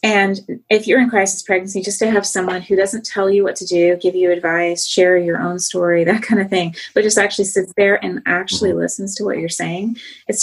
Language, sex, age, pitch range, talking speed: English, female, 30-49, 185-230 Hz, 235 wpm